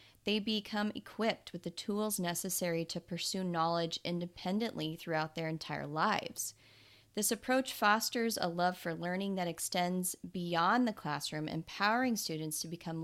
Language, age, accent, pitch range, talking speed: English, 30-49, American, 170-215 Hz, 145 wpm